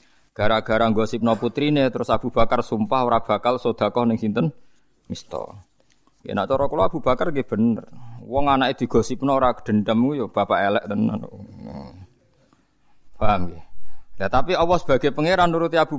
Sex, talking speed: male, 165 wpm